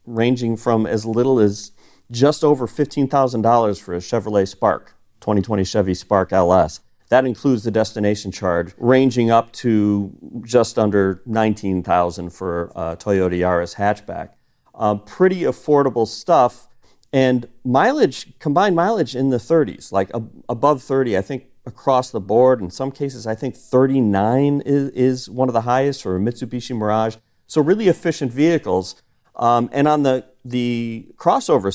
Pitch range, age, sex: 105-135 Hz, 40-59, male